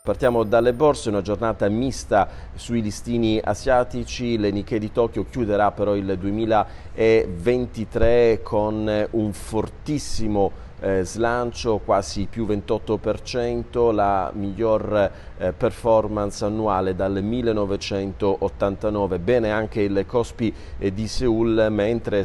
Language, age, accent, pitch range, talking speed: Italian, 40-59, native, 95-115 Hz, 100 wpm